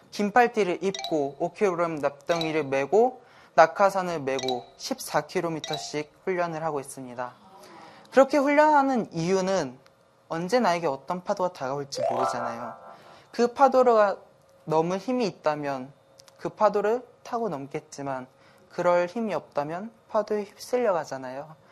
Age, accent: 20-39, native